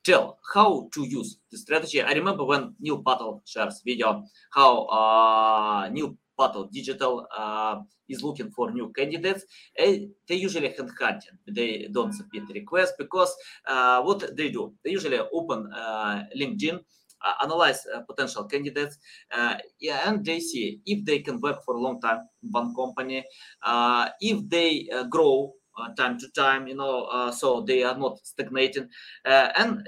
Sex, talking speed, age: male, 165 wpm, 20-39